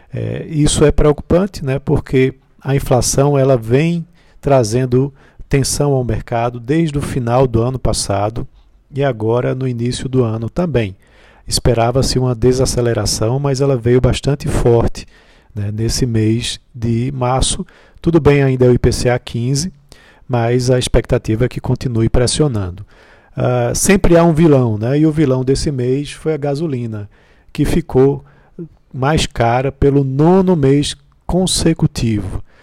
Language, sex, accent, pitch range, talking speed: Portuguese, male, Brazilian, 115-140 Hz, 135 wpm